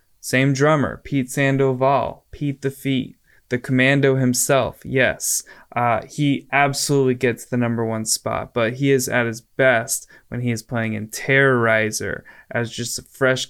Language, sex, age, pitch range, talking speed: English, male, 20-39, 115-135 Hz, 155 wpm